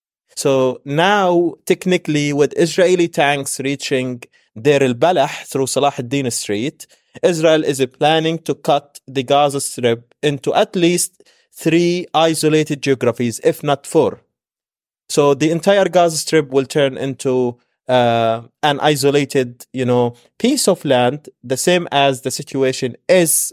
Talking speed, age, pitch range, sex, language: 135 wpm, 30-49, 120-150 Hz, male, English